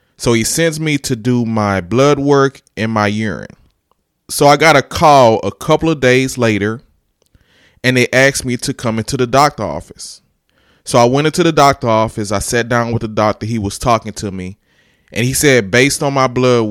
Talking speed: 205 wpm